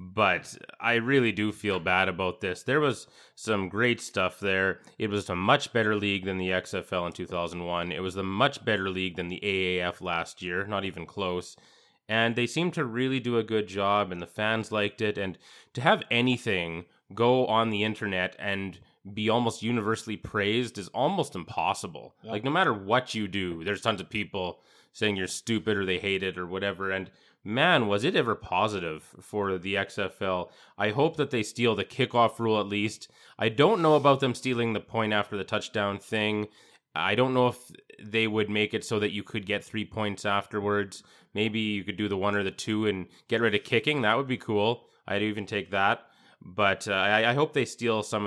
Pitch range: 95-115 Hz